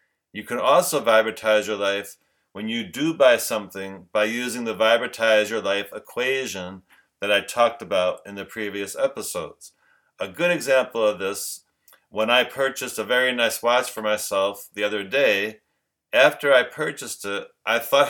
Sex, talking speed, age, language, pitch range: male, 165 wpm, 40-59, English, 100-135 Hz